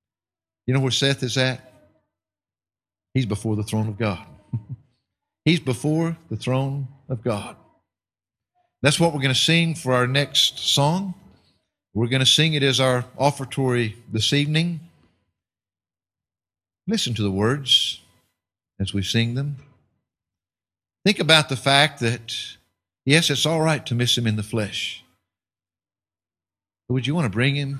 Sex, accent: male, American